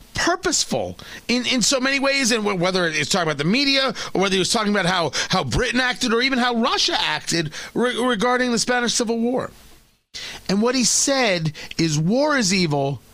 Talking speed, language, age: 195 wpm, English, 40-59